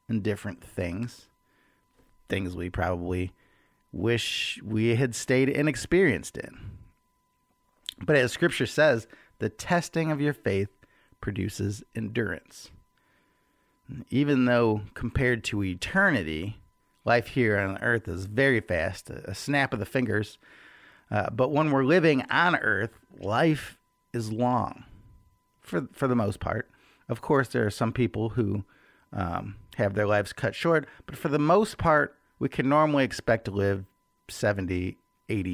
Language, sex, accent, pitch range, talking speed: English, male, American, 100-140 Hz, 135 wpm